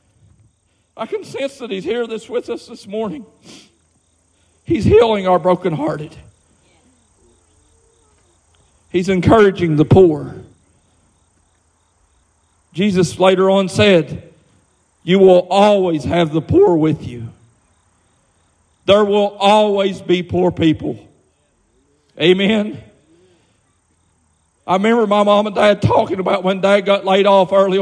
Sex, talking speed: male, 110 wpm